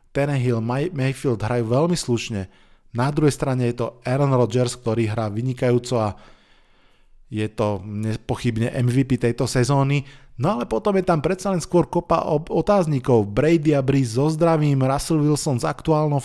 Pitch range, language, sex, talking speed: 115-140 Hz, Slovak, male, 150 wpm